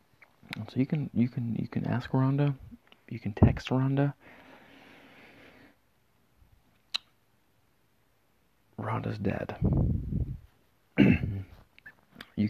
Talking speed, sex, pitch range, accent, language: 75 wpm, male, 100-130 Hz, American, English